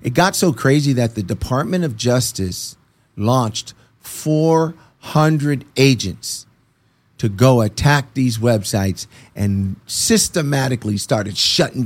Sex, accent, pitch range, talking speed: male, American, 115-145 Hz, 105 wpm